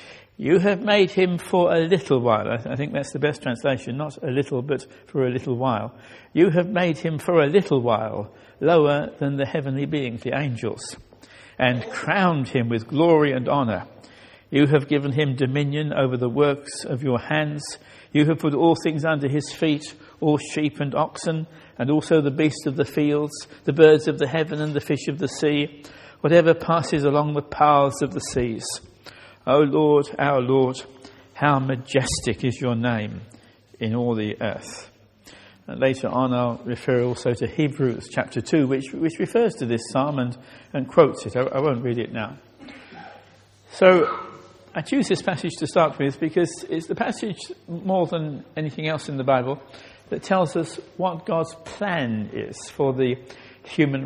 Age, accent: 60-79, British